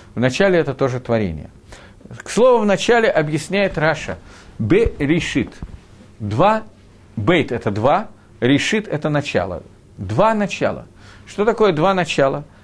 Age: 50-69